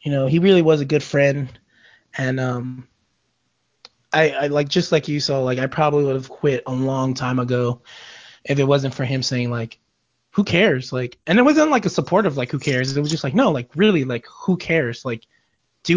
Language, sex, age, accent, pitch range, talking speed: English, male, 20-39, American, 130-155 Hz, 220 wpm